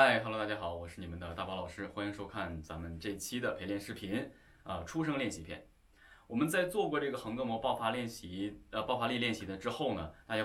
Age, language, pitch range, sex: 20-39, Chinese, 95-135 Hz, male